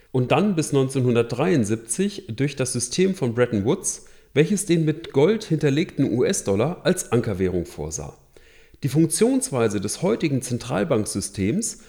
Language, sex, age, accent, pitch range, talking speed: German, male, 40-59, German, 110-165 Hz, 120 wpm